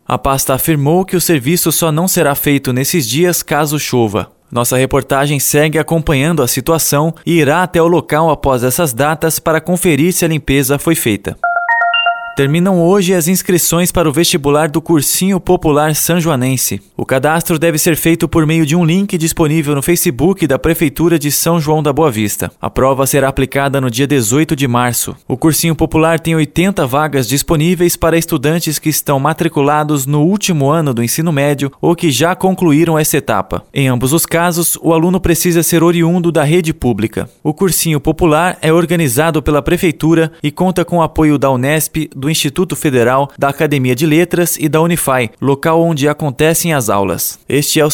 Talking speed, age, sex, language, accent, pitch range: 180 wpm, 20-39, male, Portuguese, Brazilian, 140-170 Hz